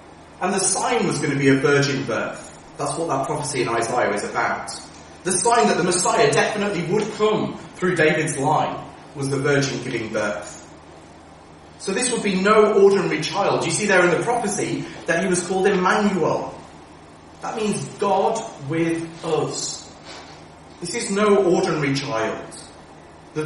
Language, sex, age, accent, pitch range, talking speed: English, male, 30-49, British, 140-205 Hz, 160 wpm